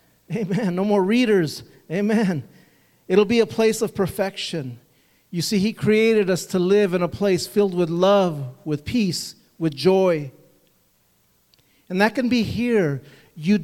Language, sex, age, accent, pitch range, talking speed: English, male, 40-59, American, 150-210 Hz, 150 wpm